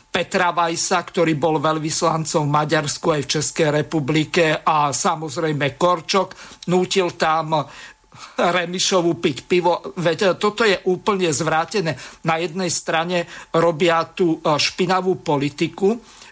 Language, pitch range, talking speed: Slovak, 155-185 Hz, 115 wpm